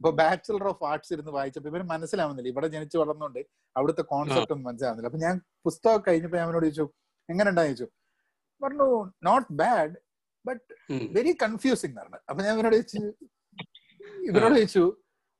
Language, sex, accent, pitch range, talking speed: Malayalam, male, native, 160-230 Hz, 85 wpm